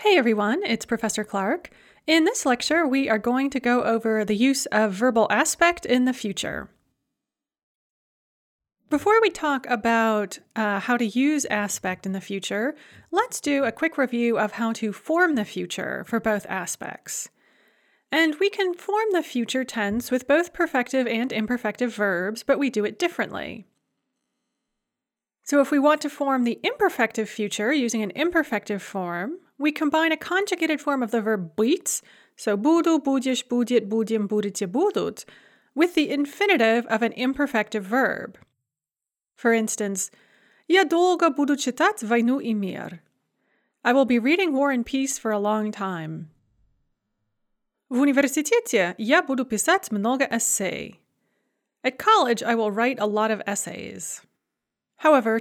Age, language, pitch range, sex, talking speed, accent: 30-49, English, 215-295 Hz, female, 150 wpm, American